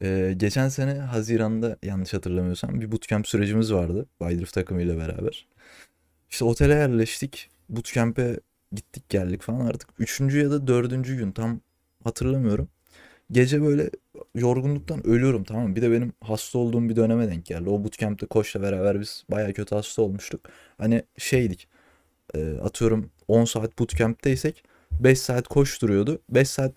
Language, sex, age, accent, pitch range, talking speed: Turkish, male, 30-49, native, 95-130 Hz, 145 wpm